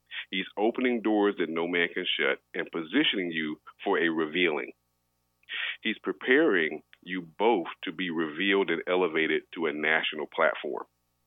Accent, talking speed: American, 145 wpm